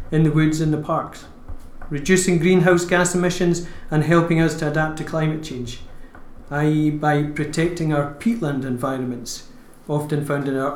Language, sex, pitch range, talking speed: English, male, 140-165 Hz, 155 wpm